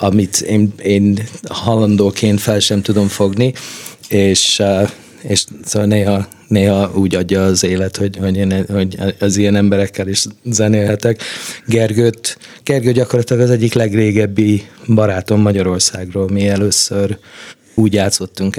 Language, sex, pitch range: Hungarian, male, 95-110 Hz